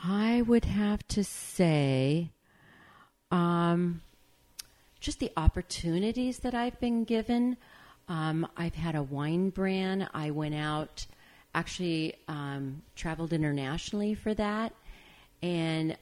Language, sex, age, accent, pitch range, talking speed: English, female, 40-59, American, 150-190 Hz, 110 wpm